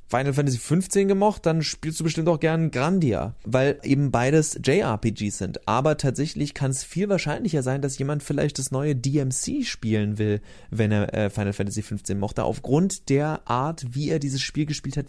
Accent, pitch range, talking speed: German, 115-145 Hz, 185 wpm